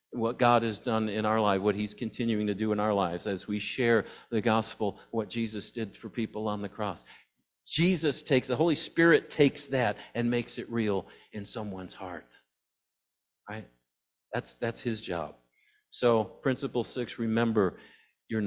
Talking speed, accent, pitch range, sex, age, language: 170 wpm, American, 105-135 Hz, male, 50-69, English